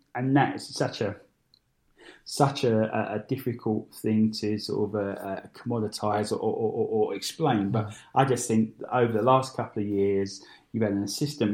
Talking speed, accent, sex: 180 wpm, British, male